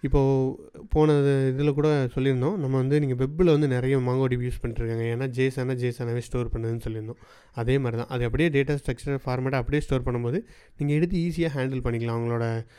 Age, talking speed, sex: 30-49, 170 wpm, male